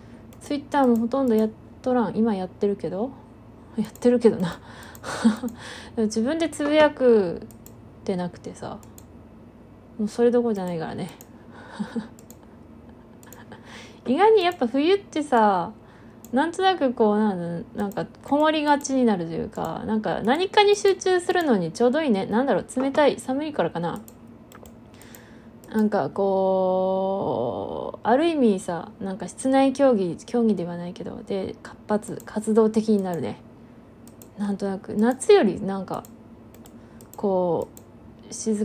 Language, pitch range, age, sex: Japanese, 170-240 Hz, 20-39, female